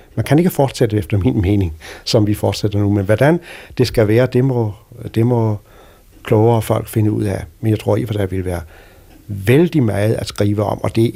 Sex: male